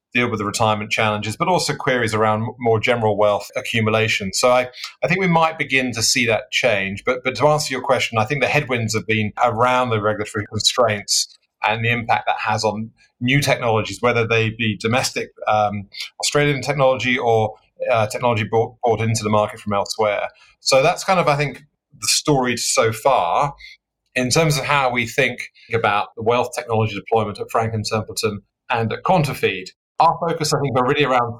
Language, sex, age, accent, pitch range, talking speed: English, male, 30-49, British, 110-130 Hz, 190 wpm